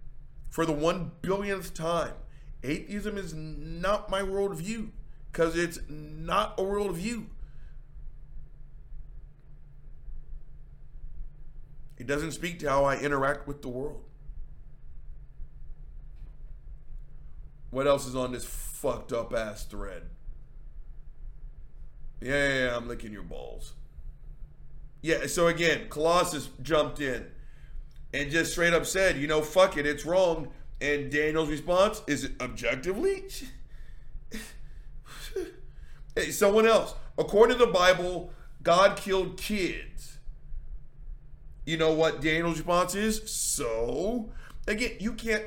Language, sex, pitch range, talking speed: English, male, 135-190 Hz, 110 wpm